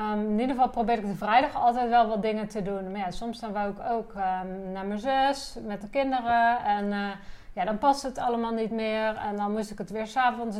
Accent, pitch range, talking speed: Dutch, 205-240 Hz, 255 wpm